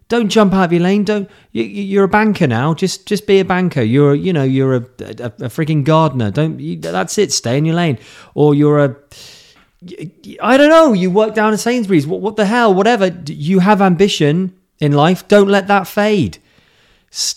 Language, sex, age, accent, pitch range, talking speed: English, male, 30-49, British, 145-205 Hz, 205 wpm